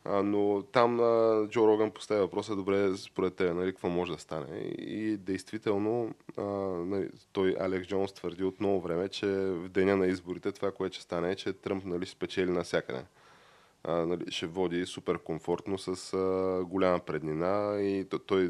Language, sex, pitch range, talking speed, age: Bulgarian, male, 90-100 Hz, 170 wpm, 20-39